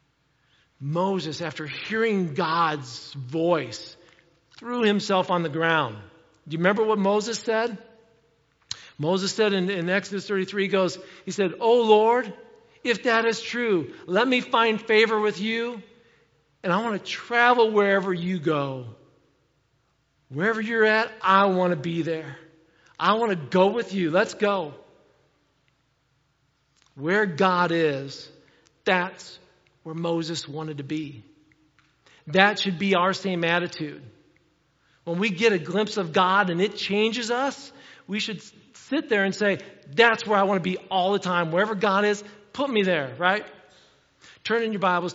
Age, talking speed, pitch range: 50-69, 150 wpm, 155-205 Hz